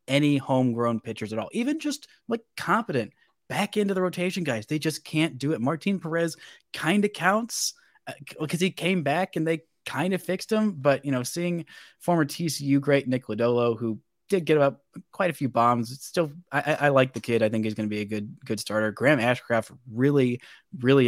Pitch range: 110-140 Hz